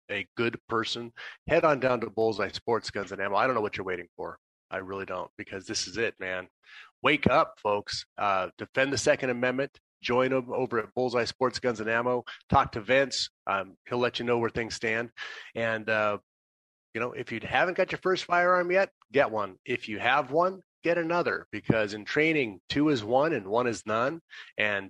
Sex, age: male, 30-49